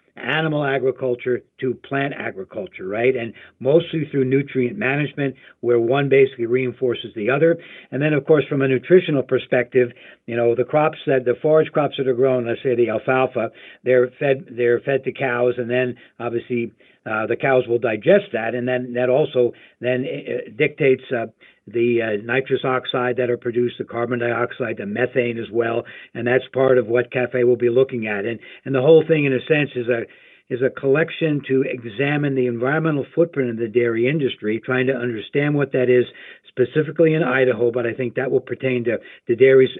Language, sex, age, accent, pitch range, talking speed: English, male, 60-79, American, 120-145 Hz, 190 wpm